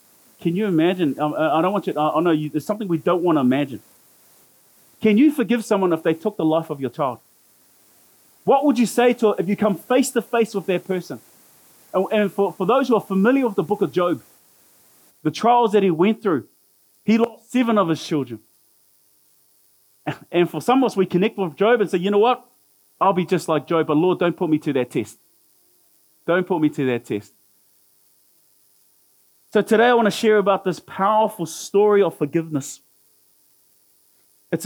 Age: 30-49